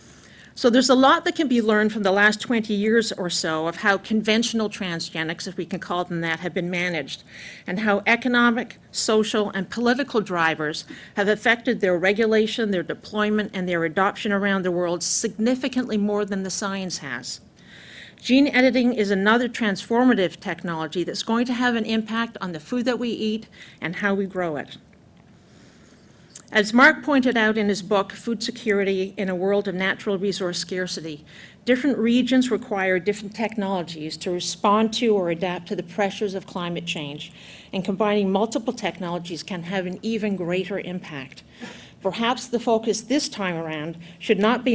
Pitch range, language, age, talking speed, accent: 180-225 Hz, English, 50-69, 170 wpm, American